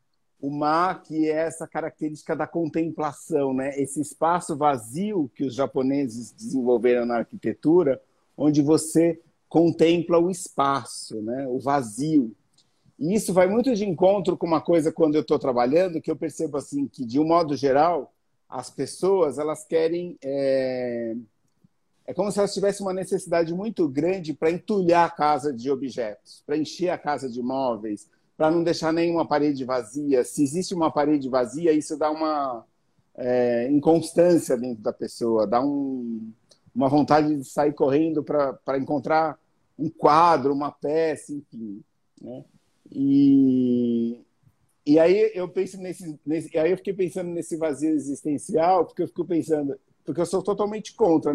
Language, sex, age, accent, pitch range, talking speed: Portuguese, male, 50-69, Brazilian, 140-170 Hz, 155 wpm